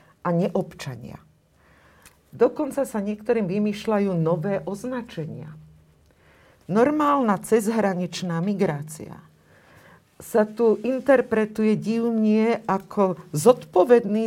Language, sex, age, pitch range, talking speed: Slovak, female, 50-69, 185-235 Hz, 70 wpm